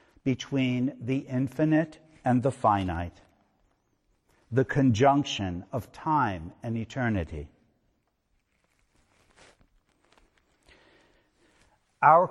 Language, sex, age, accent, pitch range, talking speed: English, male, 60-79, American, 105-145 Hz, 65 wpm